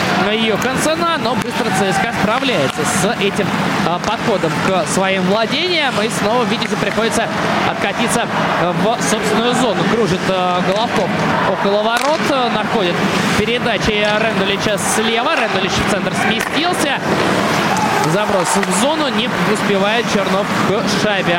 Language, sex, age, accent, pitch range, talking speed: Russian, male, 20-39, native, 200-245 Hz, 115 wpm